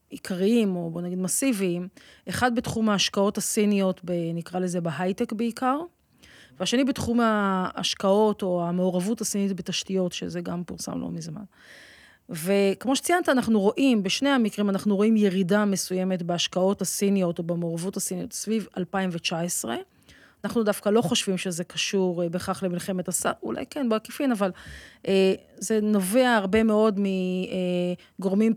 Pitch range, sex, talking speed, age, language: 185-220 Hz, female, 125 wpm, 30-49, Hebrew